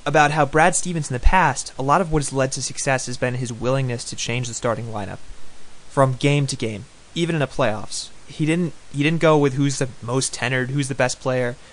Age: 20-39